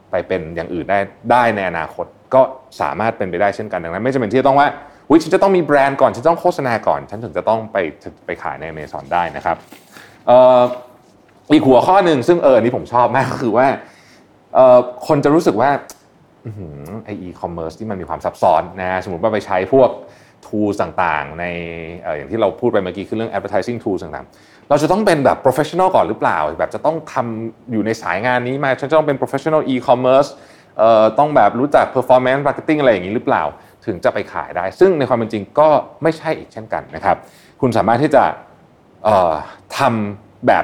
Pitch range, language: 100-140 Hz, Thai